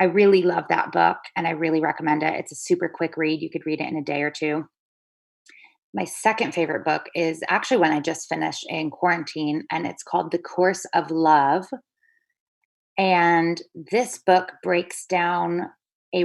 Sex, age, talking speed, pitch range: female, 20-39, 180 wpm, 160-180 Hz